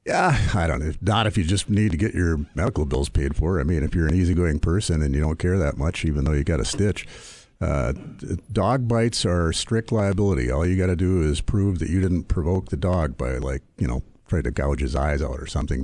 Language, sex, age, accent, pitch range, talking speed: English, male, 50-69, American, 75-100 Hz, 250 wpm